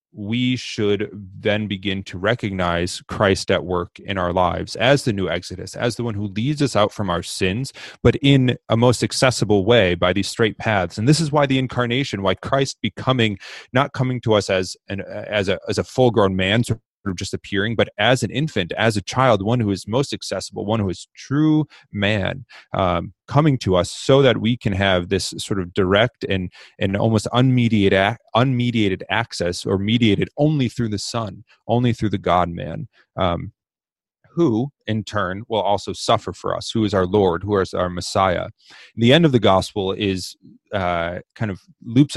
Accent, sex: American, male